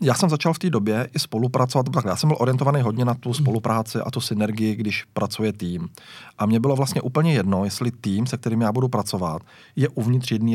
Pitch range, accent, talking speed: 105-125 Hz, native, 220 wpm